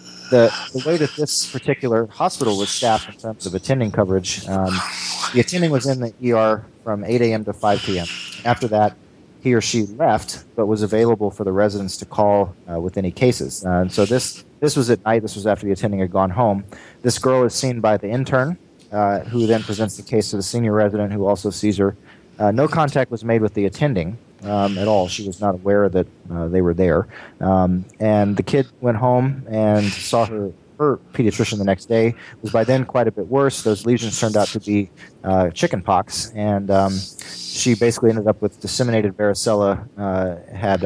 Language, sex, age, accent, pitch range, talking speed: English, male, 30-49, American, 95-115 Hz, 210 wpm